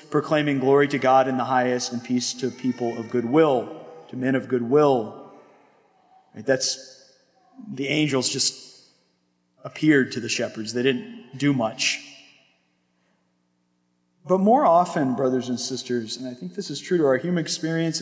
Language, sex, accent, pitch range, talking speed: English, male, American, 130-165 Hz, 150 wpm